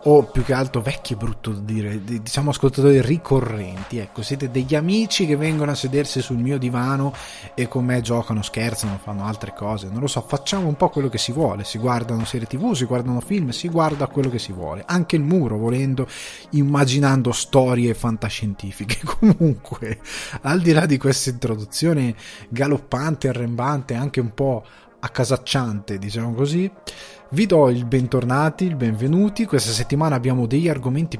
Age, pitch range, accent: 20-39, 115-140 Hz, native